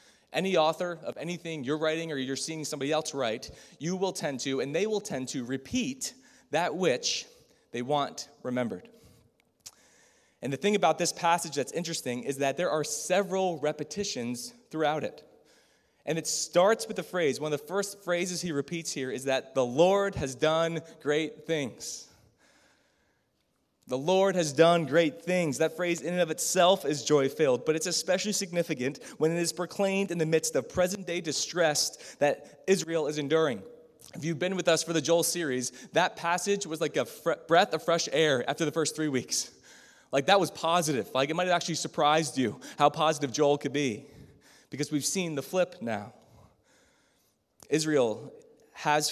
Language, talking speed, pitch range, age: English, 175 wpm, 145-180 Hz, 20-39